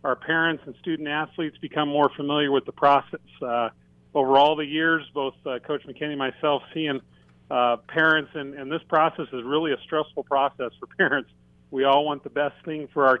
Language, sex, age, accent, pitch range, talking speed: English, male, 40-59, American, 130-155 Hz, 200 wpm